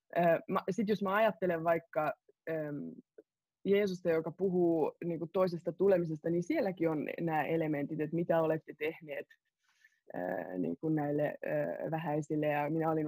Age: 20-39